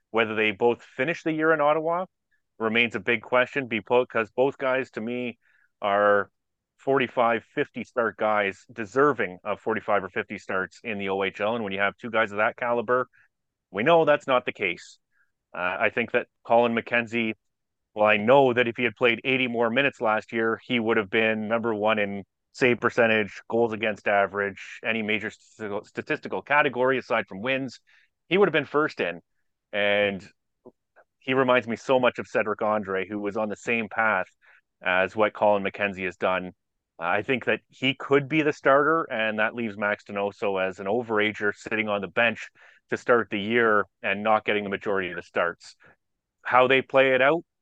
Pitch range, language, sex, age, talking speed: 105-125 Hz, English, male, 30-49, 185 wpm